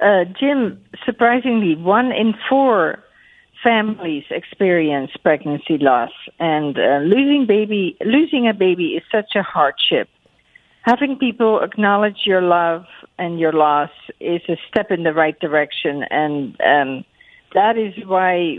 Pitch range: 170-225 Hz